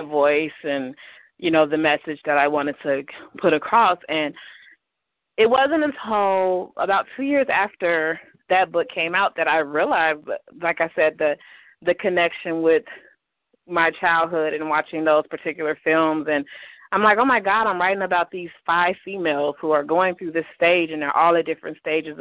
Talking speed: 175 wpm